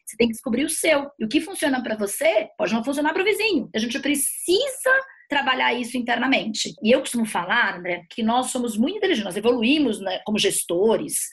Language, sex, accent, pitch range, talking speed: Portuguese, female, Brazilian, 220-295 Hz, 205 wpm